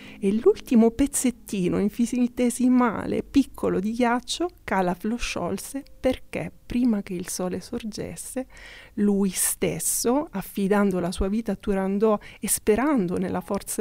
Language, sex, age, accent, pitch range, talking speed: Italian, female, 30-49, native, 185-225 Hz, 120 wpm